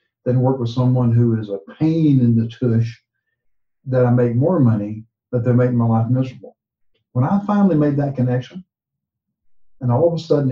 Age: 60-79